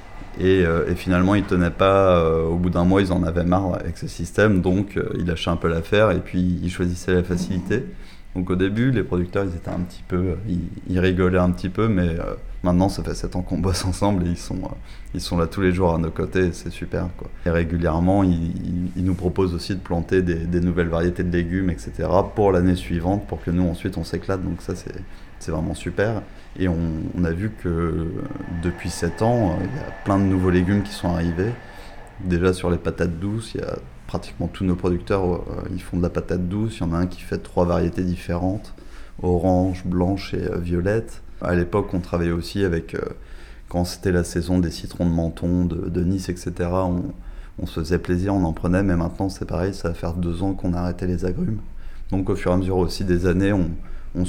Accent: French